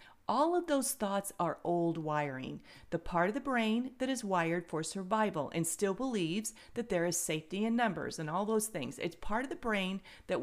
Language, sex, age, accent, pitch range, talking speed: English, female, 40-59, American, 170-240 Hz, 205 wpm